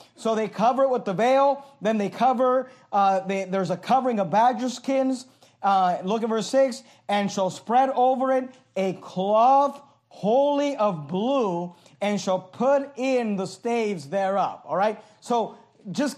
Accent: American